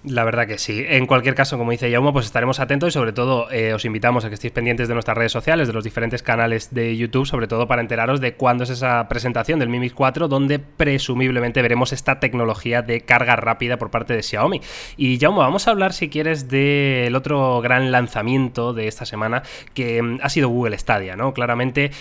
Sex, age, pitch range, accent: male, 20-39, 120-140 Hz, Spanish